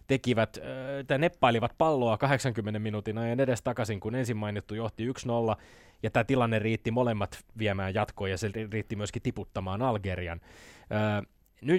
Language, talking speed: Finnish, 130 wpm